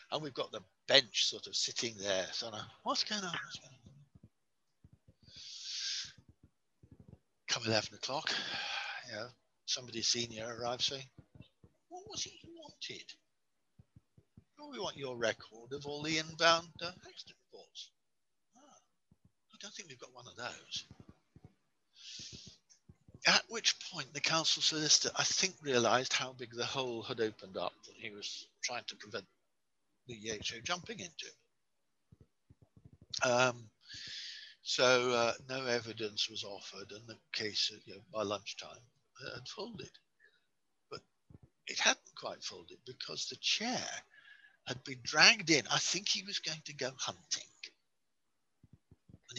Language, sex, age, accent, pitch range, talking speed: English, male, 60-79, British, 120-175 Hz, 130 wpm